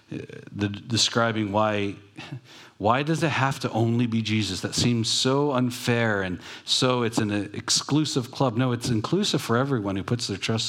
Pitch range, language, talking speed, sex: 110-140 Hz, English, 170 wpm, male